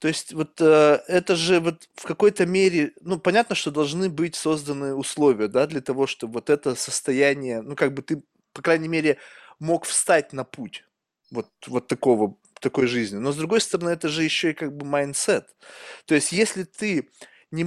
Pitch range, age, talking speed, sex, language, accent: 145-190 Hz, 20-39, 190 wpm, male, Russian, native